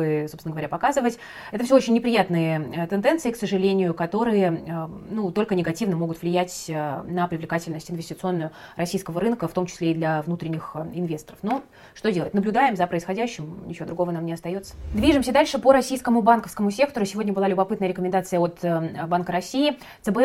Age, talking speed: 20-39, 155 wpm